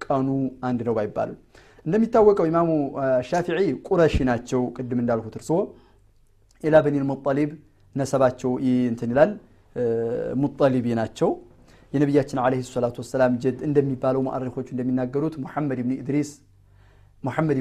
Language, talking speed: Amharic, 110 wpm